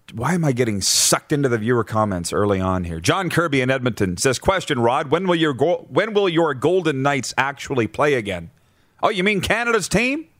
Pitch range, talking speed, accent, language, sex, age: 110-150 Hz, 210 wpm, American, English, male, 40-59